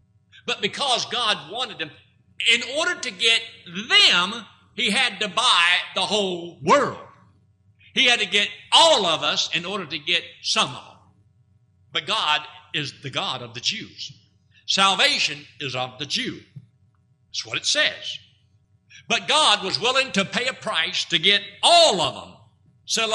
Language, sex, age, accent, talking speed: English, male, 60-79, American, 160 wpm